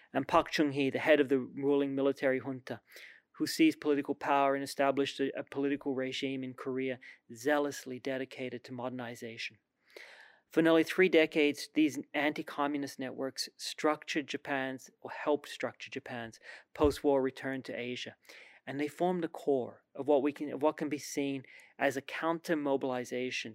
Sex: male